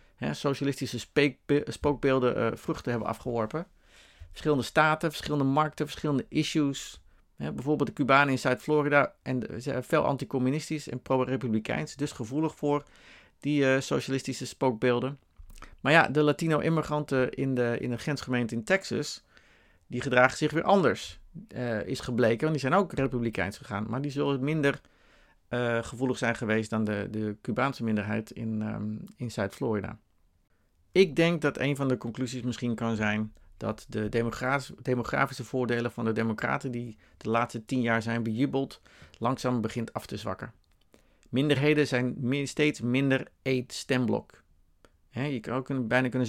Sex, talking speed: male, 150 wpm